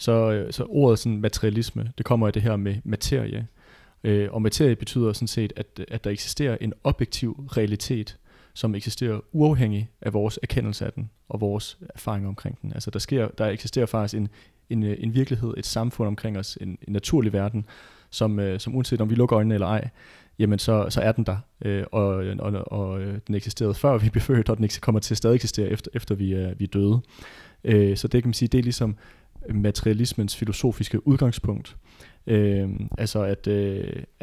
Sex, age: male, 30-49